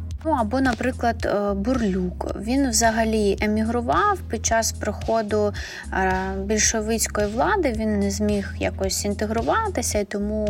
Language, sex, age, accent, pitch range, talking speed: Ukrainian, female, 20-39, native, 185-230 Hz, 105 wpm